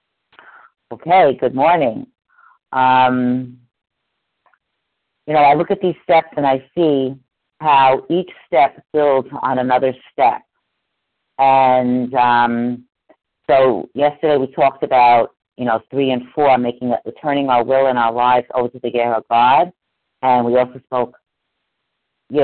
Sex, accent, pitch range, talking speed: female, American, 120-140 Hz, 140 wpm